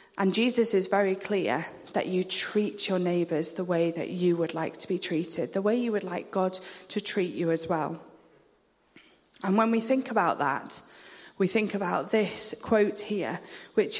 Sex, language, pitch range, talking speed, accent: female, English, 175-210 Hz, 185 wpm, British